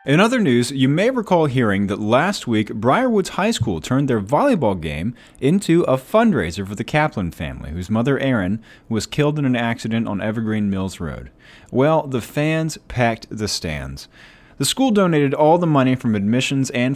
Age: 30-49